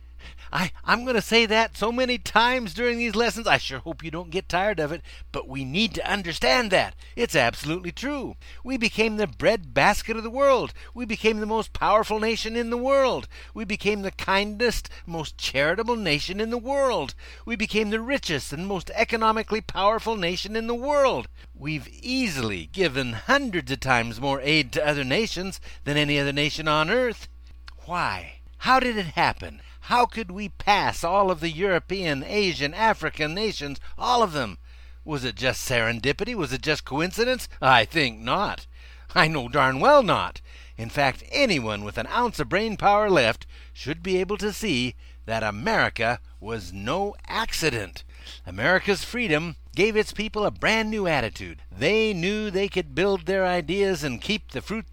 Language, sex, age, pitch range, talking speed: English, male, 60-79, 135-220 Hz, 175 wpm